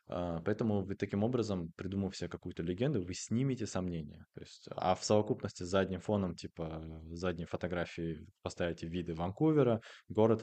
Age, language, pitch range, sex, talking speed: 20-39, Russian, 85-105 Hz, male, 150 wpm